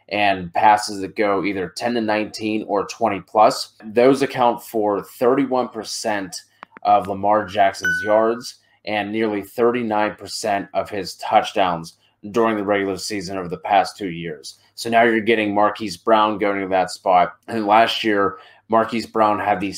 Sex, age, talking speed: male, 20-39, 155 wpm